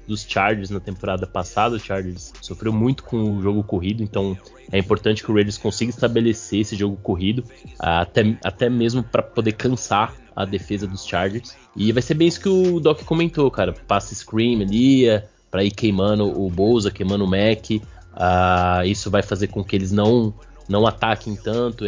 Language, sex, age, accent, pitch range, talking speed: Portuguese, male, 20-39, Brazilian, 95-110 Hz, 185 wpm